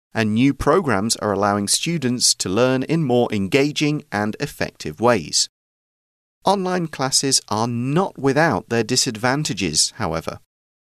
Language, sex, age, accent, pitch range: Chinese, male, 40-59, British, 95-135 Hz